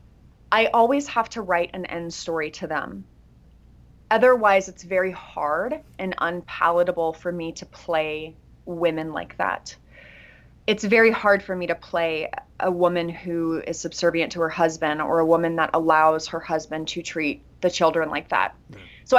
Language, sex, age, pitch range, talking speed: English, female, 20-39, 165-190 Hz, 165 wpm